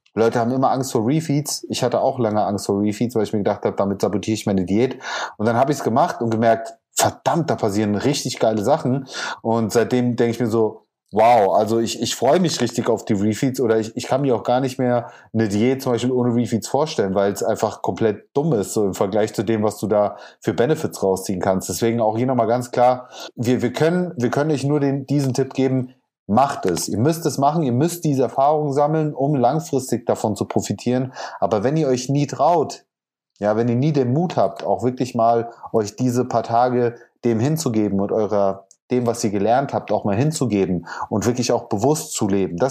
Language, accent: German, German